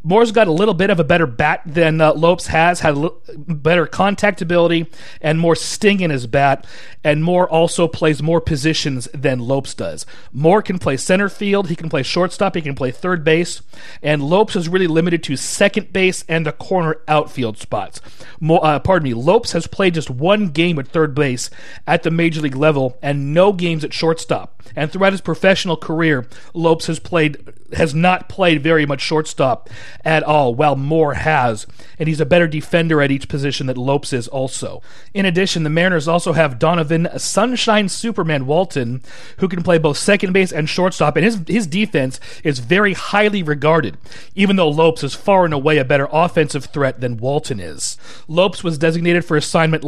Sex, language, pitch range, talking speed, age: male, English, 145-180 Hz, 190 wpm, 40-59